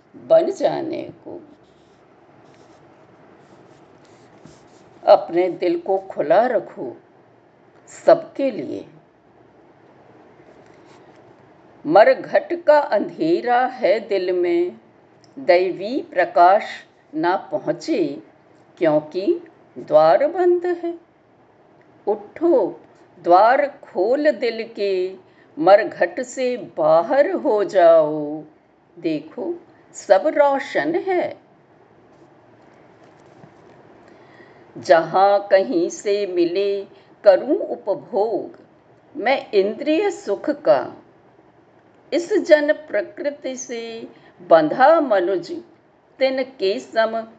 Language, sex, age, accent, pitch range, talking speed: Hindi, female, 50-69, native, 205-335 Hz, 70 wpm